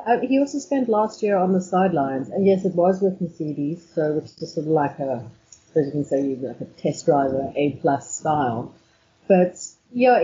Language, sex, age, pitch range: English, female, 30-49, 150-195 Hz